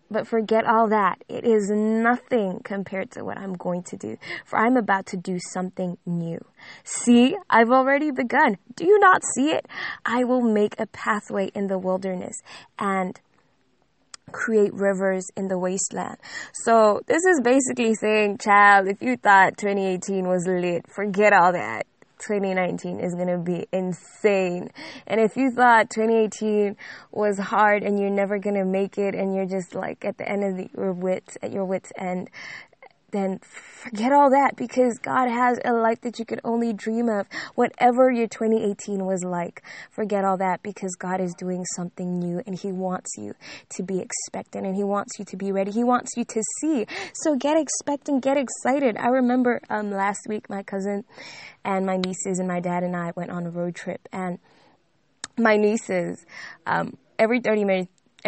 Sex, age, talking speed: female, 10-29, 175 wpm